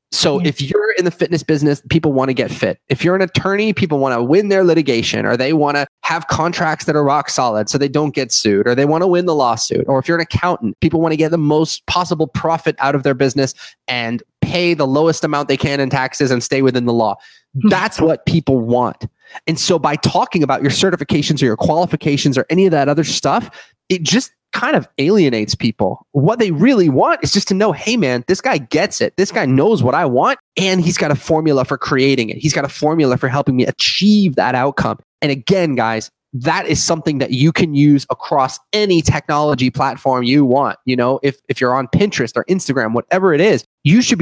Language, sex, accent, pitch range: English, male, American, 130-170 Hz